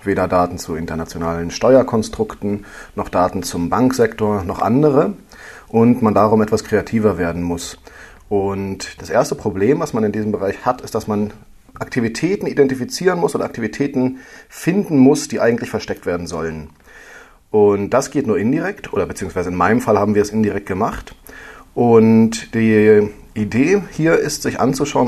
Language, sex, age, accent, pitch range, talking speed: German, male, 40-59, German, 100-125 Hz, 155 wpm